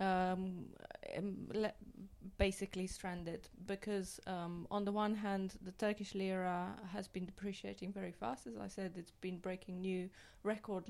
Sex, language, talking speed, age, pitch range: female, English, 145 wpm, 20-39, 190-215 Hz